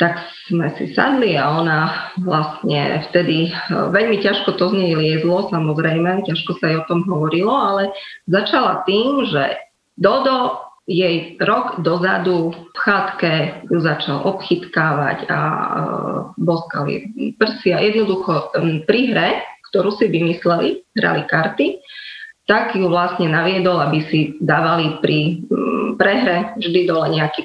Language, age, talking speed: Slovak, 30-49, 120 wpm